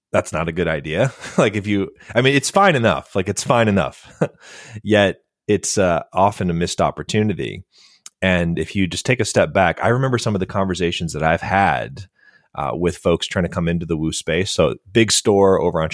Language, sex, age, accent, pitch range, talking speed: English, male, 30-49, American, 85-110 Hz, 210 wpm